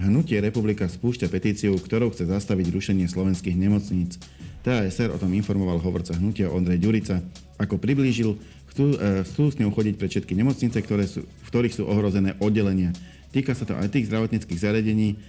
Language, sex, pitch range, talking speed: Slovak, male, 90-105 Hz, 155 wpm